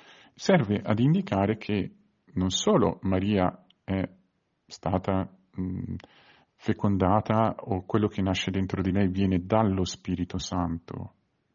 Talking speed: 110 wpm